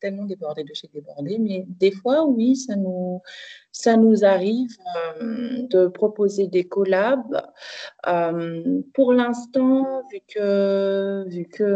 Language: French